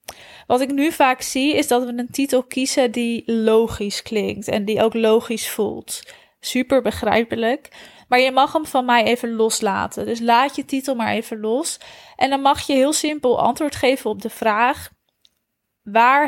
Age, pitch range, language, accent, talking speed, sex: 20-39, 225-265 Hz, Dutch, Dutch, 175 wpm, female